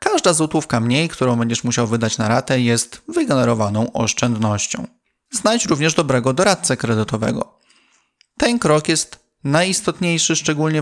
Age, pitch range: 30-49, 115-155 Hz